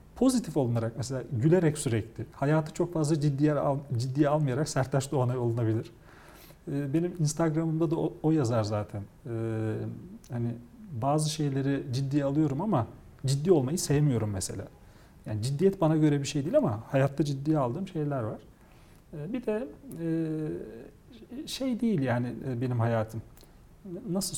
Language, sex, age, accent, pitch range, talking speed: Turkish, male, 40-59, native, 130-165 Hz, 140 wpm